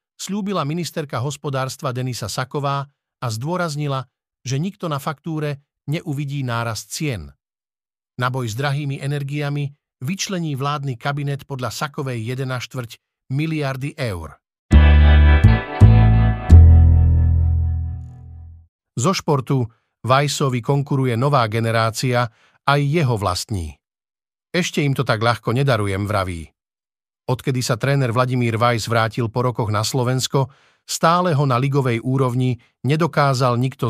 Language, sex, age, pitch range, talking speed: Slovak, male, 50-69, 115-145 Hz, 105 wpm